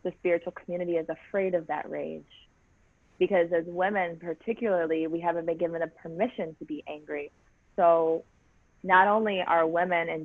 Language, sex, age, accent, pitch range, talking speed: English, female, 30-49, American, 170-200 Hz, 160 wpm